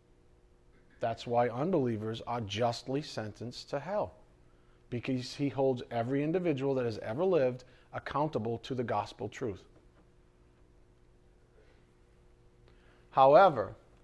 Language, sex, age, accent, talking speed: English, male, 40-59, American, 100 wpm